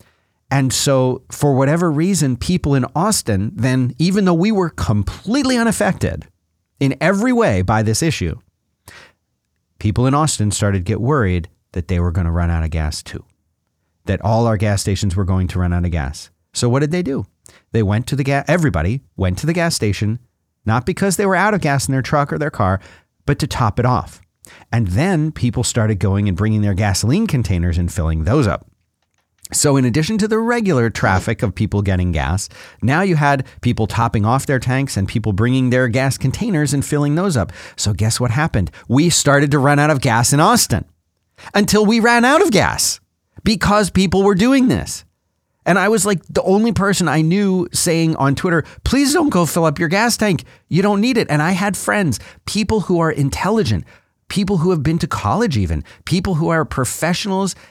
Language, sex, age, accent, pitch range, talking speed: English, male, 40-59, American, 100-170 Hz, 200 wpm